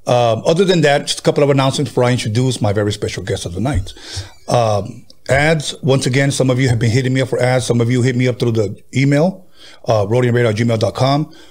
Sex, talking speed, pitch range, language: male, 230 wpm, 115-140 Hz, English